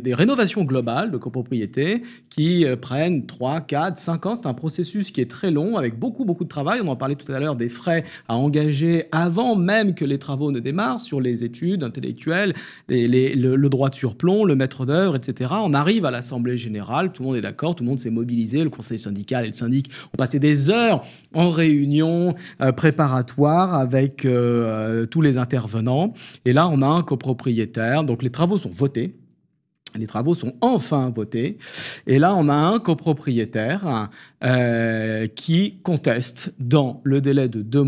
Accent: French